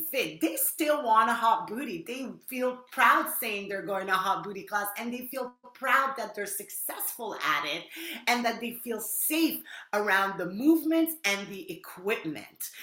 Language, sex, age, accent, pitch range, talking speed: English, female, 30-49, American, 195-250 Hz, 175 wpm